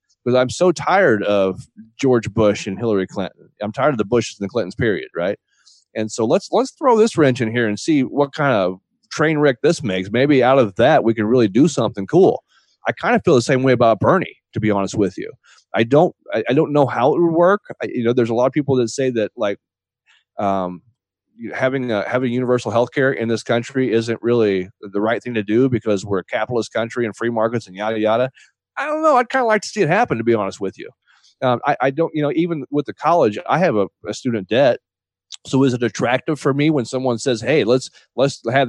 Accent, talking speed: American, 245 wpm